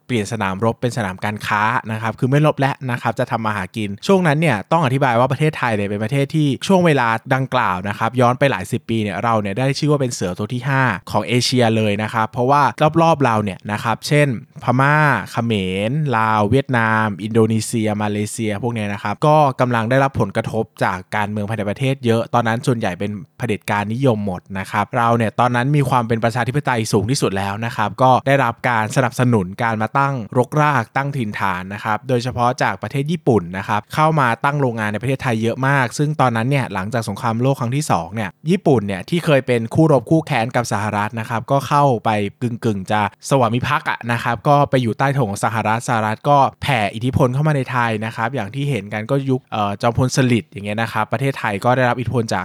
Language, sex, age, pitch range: Thai, male, 20-39, 110-135 Hz